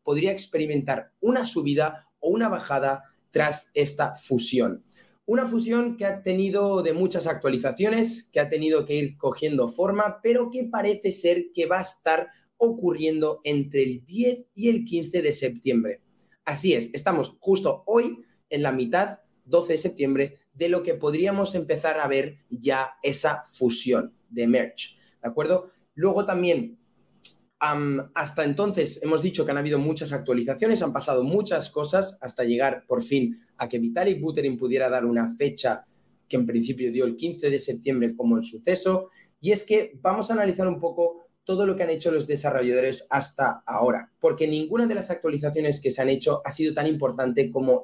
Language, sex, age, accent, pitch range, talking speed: Spanish, male, 30-49, Spanish, 135-195 Hz, 170 wpm